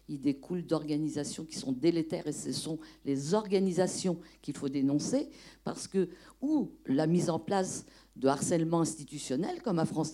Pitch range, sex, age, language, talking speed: 170-220 Hz, female, 50-69, French, 160 wpm